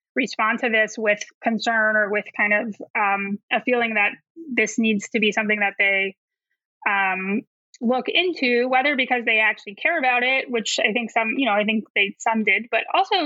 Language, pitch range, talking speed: English, 210-255 Hz, 195 wpm